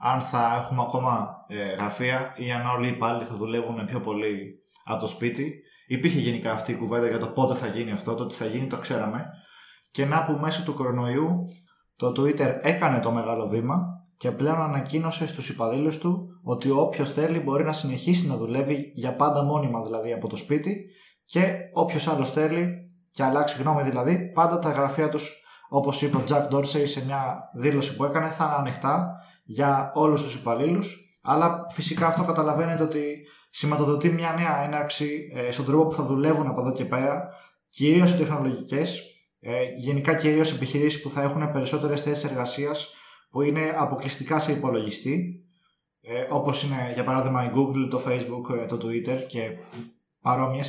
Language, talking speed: Greek, 170 wpm